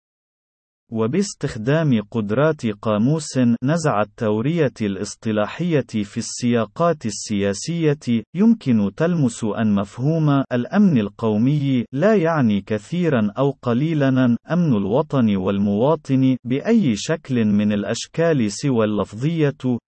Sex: male